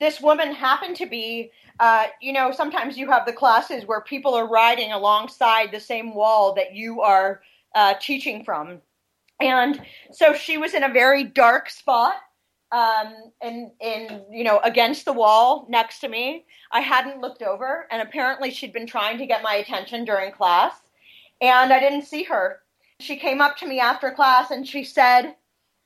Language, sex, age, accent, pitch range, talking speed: English, female, 30-49, American, 230-285 Hz, 175 wpm